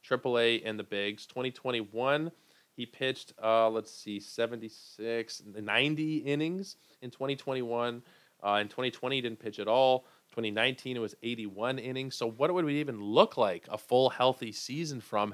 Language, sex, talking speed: English, male, 155 wpm